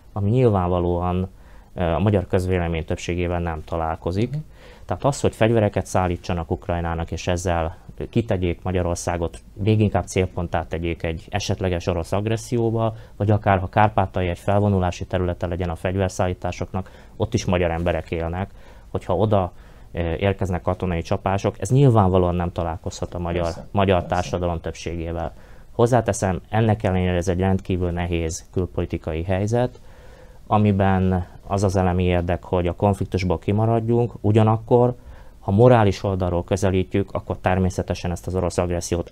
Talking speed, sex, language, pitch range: 130 wpm, male, Hungarian, 90-105 Hz